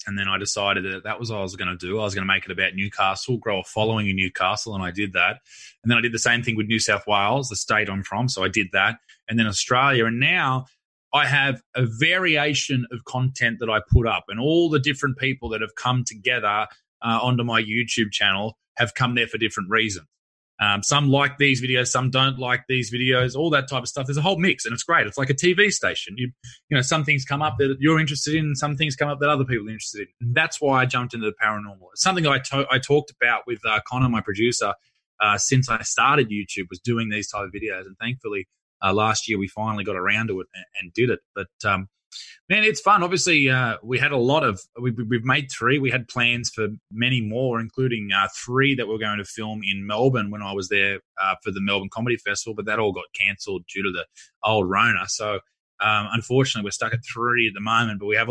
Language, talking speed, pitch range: English, 250 wpm, 105-130 Hz